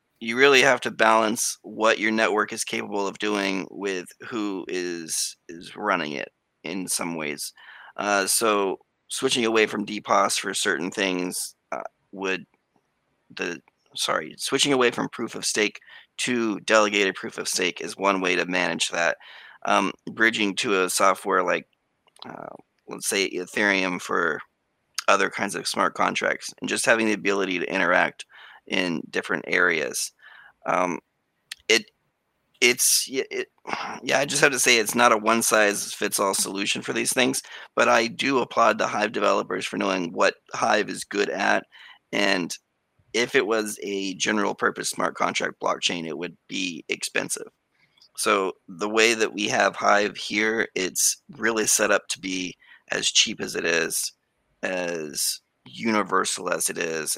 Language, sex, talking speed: English, male, 155 wpm